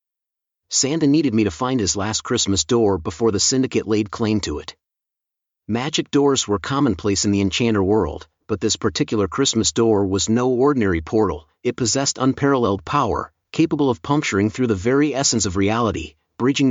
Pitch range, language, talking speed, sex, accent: 105-130 Hz, English, 170 wpm, male, American